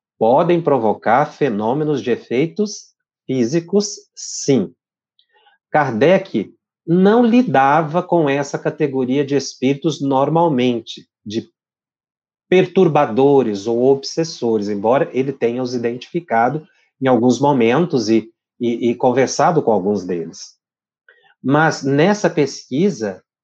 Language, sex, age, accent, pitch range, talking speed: Portuguese, male, 40-59, Brazilian, 120-165 Hz, 95 wpm